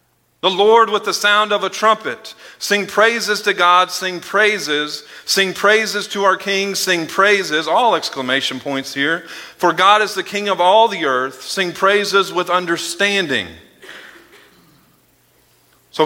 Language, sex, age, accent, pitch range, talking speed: English, male, 40-59, American, 135-190 Hz, 145 wpm